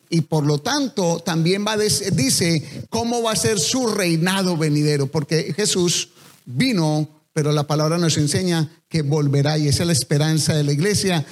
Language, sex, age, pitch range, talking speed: English, male, 40-59, 155-195 Hz, 180 wpm